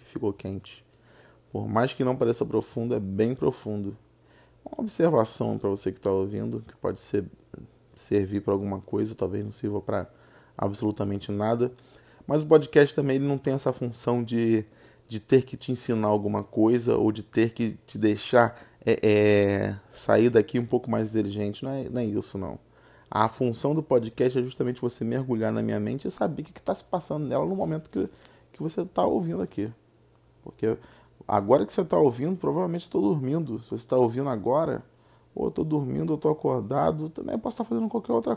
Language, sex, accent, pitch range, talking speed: Portuguese, male, Brazilian, 105-130 Hz, 195 wpm